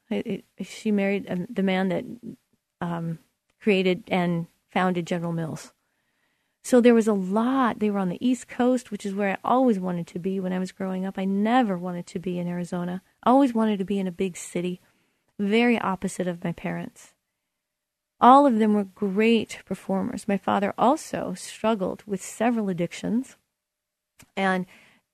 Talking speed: 170 wpm